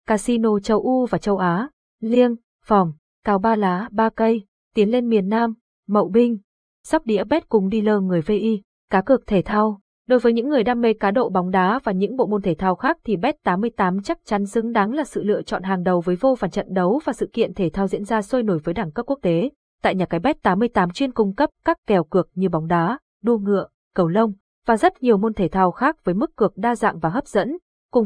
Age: 20-39